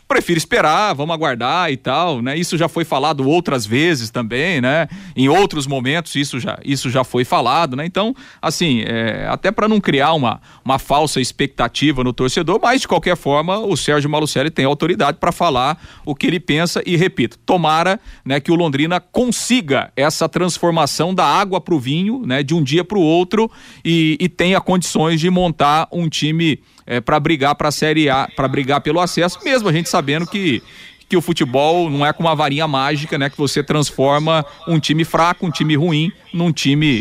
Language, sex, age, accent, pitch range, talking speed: Portuguese, male, 40-59, Brazilian, 140-175 Hz, 195 wpm